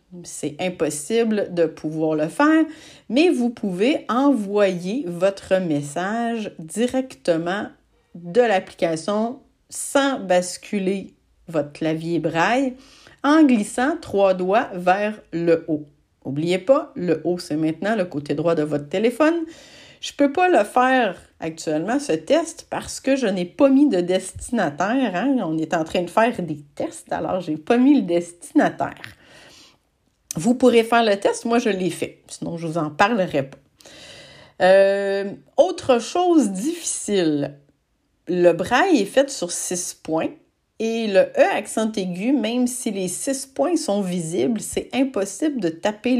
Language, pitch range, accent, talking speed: French, 175-260 Hz, Canadian, 150 wpm